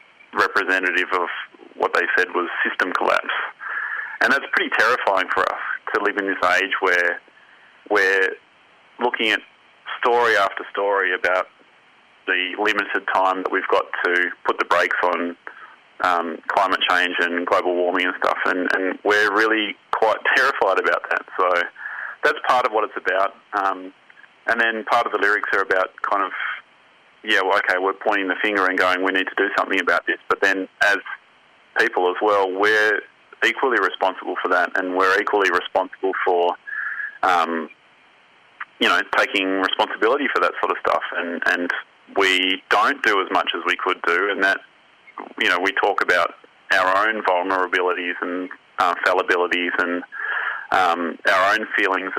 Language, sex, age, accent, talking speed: English, male, 30-49, Australian, 165 wpm